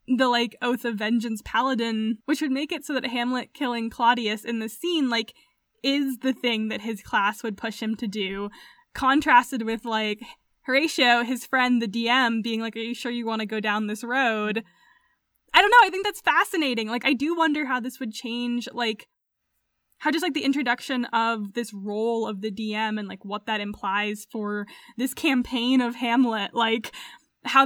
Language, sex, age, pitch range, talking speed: English, female, 10-29, 220-265 Hz, 195 wpm